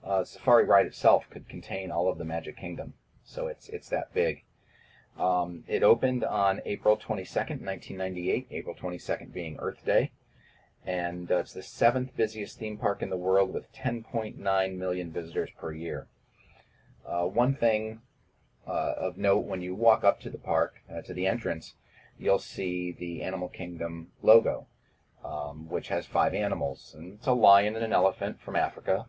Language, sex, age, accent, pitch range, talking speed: English, male, 40-59, American, 85-115 Hz, 170 wpm